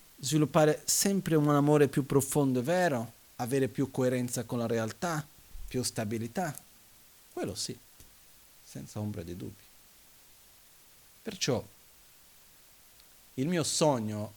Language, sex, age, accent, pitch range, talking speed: Italian, male, 40-59, native, 105-150 Hz, 110 wpm